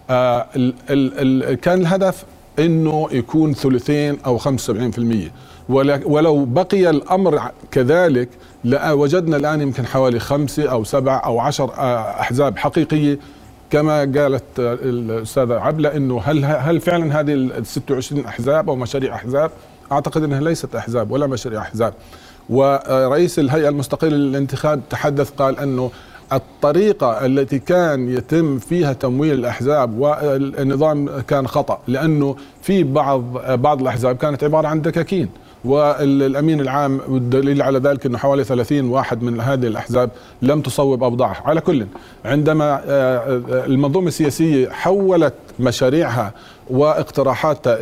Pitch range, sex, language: 125-150 Hz, male, Arabic